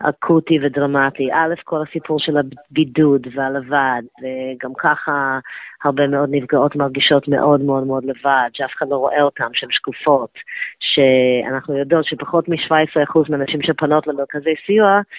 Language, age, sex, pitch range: Hebrew, 20-39, female, 140-160 Hz